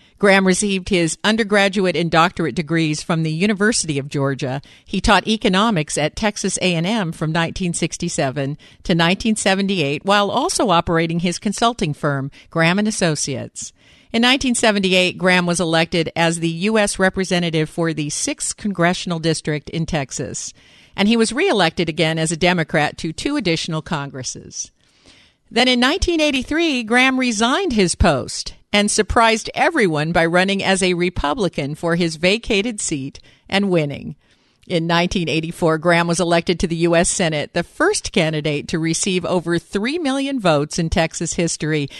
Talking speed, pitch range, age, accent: 145 wpm, 160-210 Hz, 50-69, American